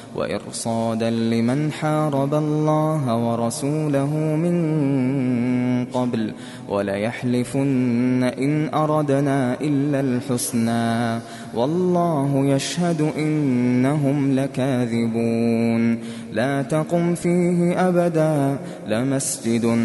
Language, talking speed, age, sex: Arabic, 65 wpm, 20-39, male